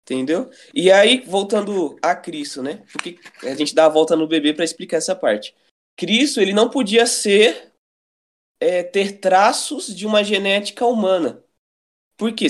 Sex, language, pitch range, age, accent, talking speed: male, Portuguese, 165-230 Hz, 20-39, Brazilian, 155 wpm